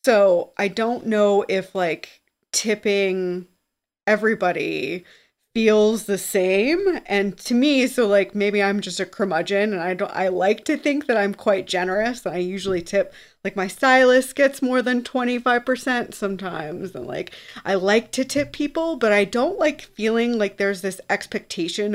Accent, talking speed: American, 165 wpm